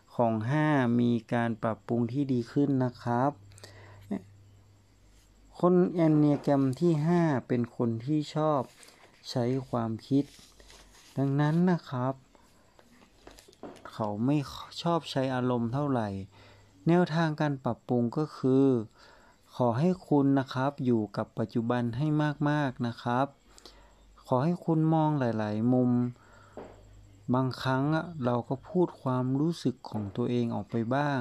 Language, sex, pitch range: Thai, male, 115-145 Hz